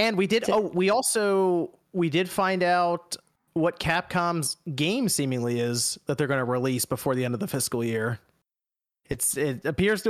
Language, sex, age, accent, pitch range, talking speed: English, male, 30-49, American, 140-195 Hz, 180 wpm